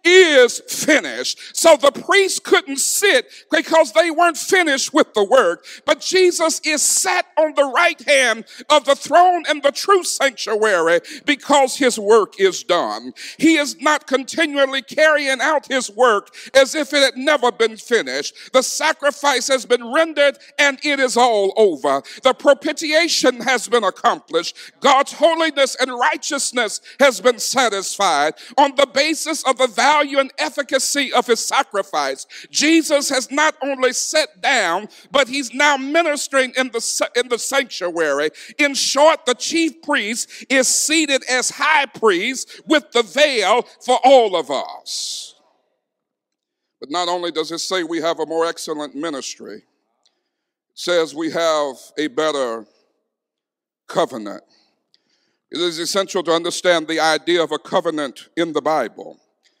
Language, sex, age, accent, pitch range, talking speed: English, male, 50-69, American, 225-300 Hz, 150 wpm